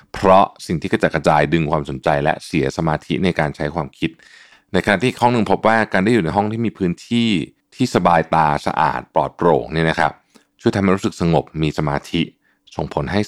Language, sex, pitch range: Thai, male, 80-105 Hz